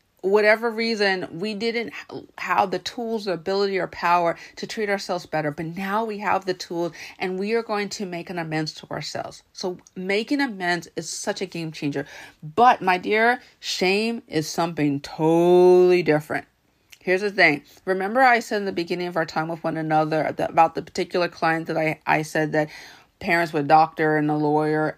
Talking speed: 185 wpm